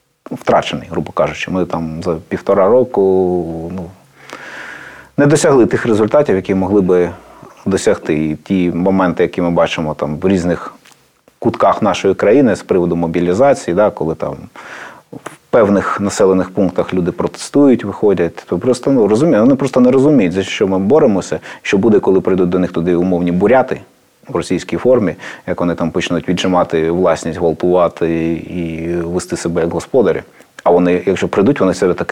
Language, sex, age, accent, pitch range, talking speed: Ukrainian, male, 30-49, native, 85-95 Hz, 160 wpm